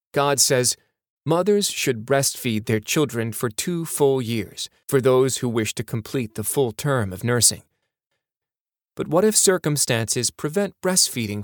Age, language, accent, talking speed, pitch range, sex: 30-49, English, American, 145 wpm, 115-145 Hz, male